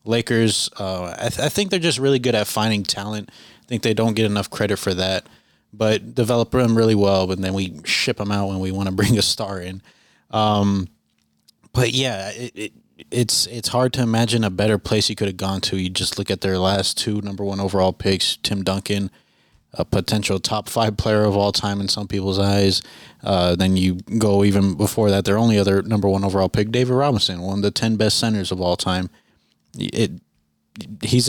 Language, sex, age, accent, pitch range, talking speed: English, male, 20-39, American, 95-110 Hz, 205 wpm